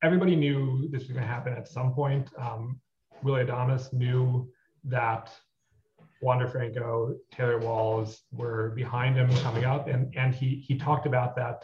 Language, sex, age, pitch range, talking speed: English, male, 30-49, 120-140 Hz, 155 wpm